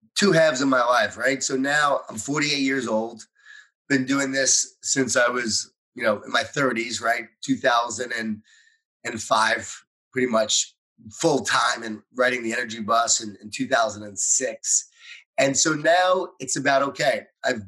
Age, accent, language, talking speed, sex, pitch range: 30-49, American, English, 150 wpm, male, 115-135 Hz